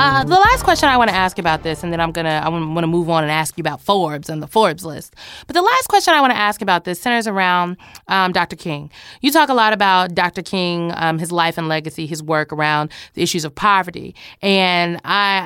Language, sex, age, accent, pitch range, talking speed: English, female, 20-39, American, 175-230 Hz, 250 wpm